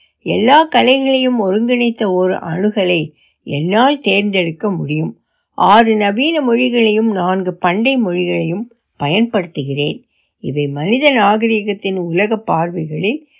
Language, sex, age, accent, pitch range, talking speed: Tamil, female, 60-79, native, 180-255 Hz, 90 wpm